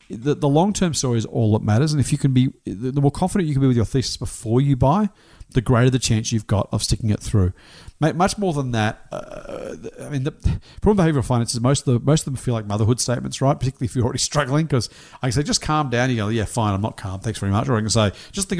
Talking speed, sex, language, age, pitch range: 285 wpm, male, English, 40-59, 110-145 Hz